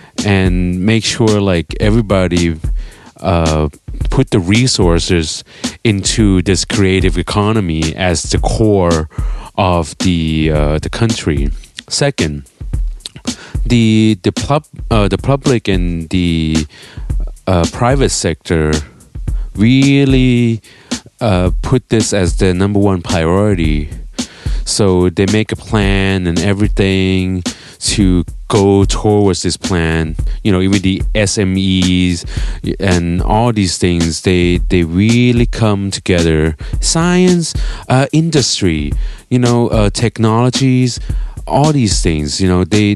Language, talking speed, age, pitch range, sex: English, 110 wpm, 30-49, 85-110 Hz, male